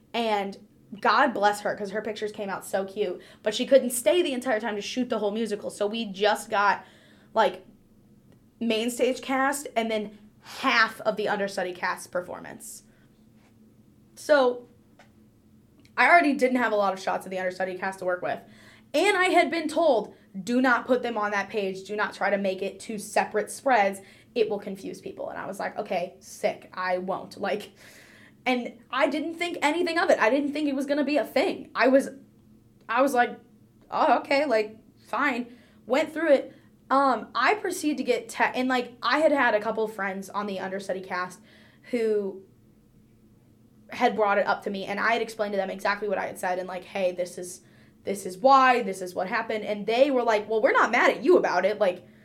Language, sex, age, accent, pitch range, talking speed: English, female, 10-29, American, 195-255 Hz, 205 wpm